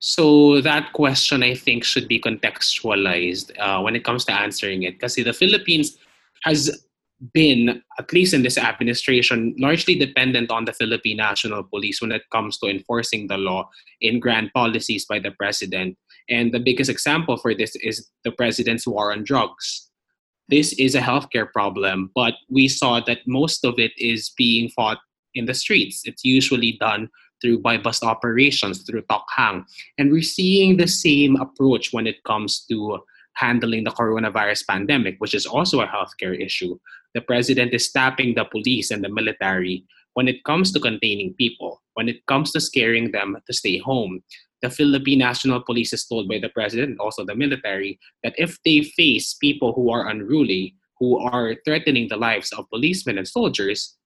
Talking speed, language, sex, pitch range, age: 175 wpm, English, male, 115-135 Hz, 20-39